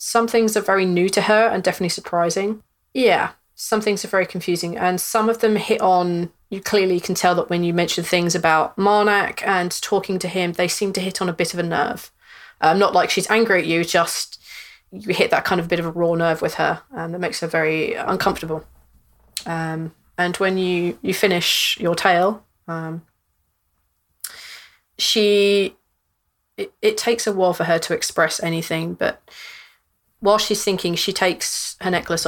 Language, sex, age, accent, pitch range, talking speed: English, female, 30-49, British, 155-190 Hz, 190 wpm